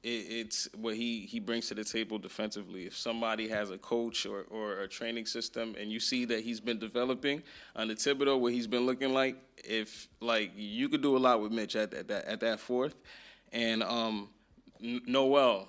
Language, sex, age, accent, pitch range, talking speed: English, male, 20-39, American, 120-145 Hz, 195 wpm